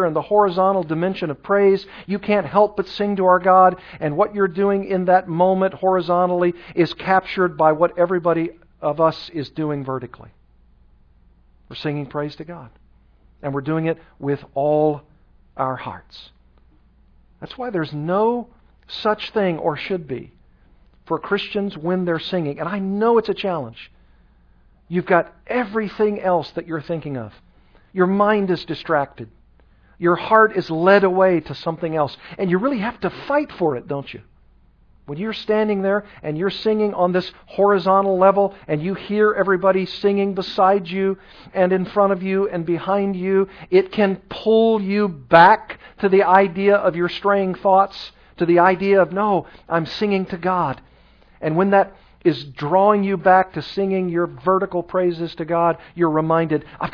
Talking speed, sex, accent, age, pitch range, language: 170 wpm, male, American, 50-69, 150-195 Hz, English